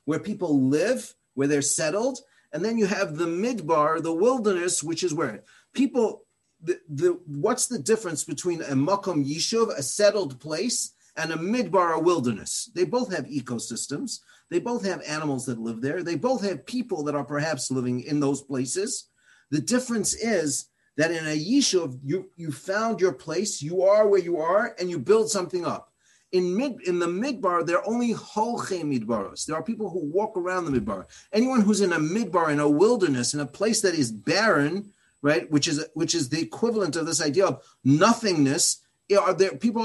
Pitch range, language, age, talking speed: 155-215 Hz, English, 40-59, 185 wpm